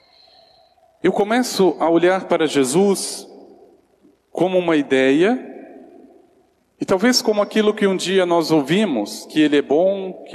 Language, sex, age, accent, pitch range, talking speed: Portuguese, male, 40-59, Brazilian, 150-225 Hz, 135 wpm